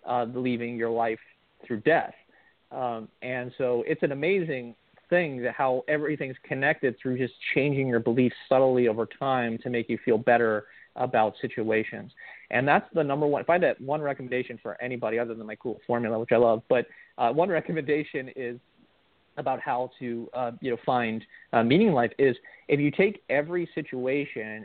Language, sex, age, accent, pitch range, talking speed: English, male, 40-59, American, 120-150 Hz, 180 wpm